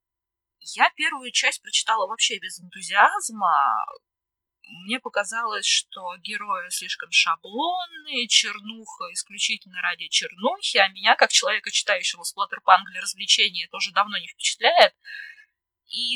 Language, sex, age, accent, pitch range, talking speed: Russian, female, 20-39, native, 195-285 Hz, 110 wpm